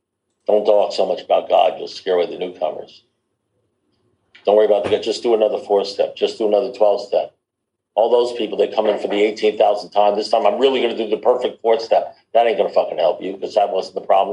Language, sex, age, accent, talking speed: English, male, 50-69, American, 245 wpm